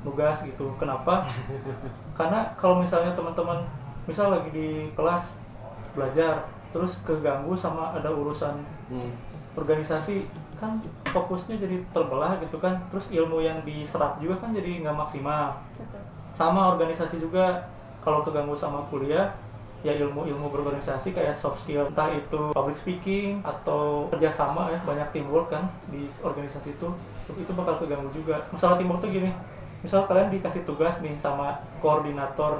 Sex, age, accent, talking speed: male, 20-39, native, 135 wpm